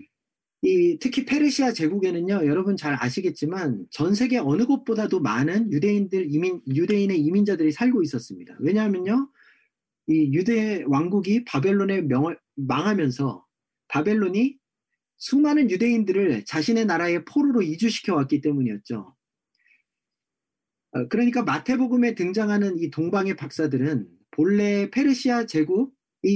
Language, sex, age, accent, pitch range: Korean, male, 40-59, native, 150-235 Hz